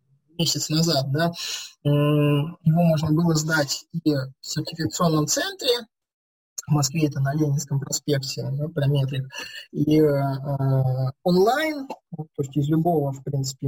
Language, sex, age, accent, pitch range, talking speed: Russian, male, 20-39, native, 140-165 Hz, 125 wpm